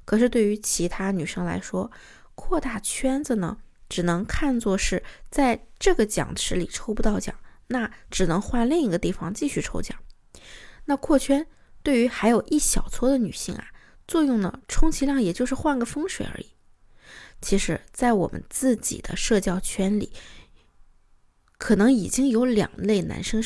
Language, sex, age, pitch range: Chinese, female, 20-39, 195-265 Hz